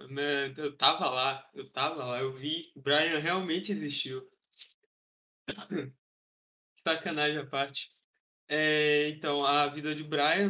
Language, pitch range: Portuguese, 155-245 Hz